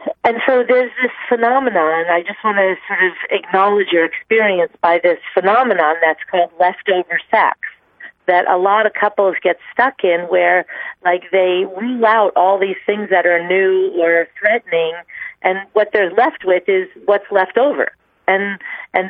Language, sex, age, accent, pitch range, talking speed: English, female, 40-59, American, 180-220 Hz, 170 wpm